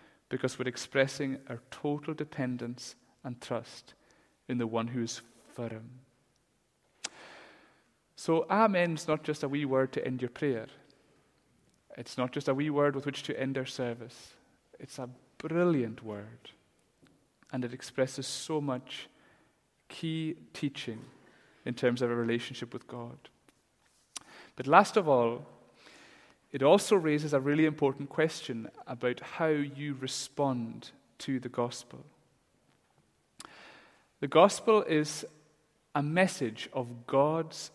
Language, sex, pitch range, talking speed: English, male, 125-155 Hz, 130 wpm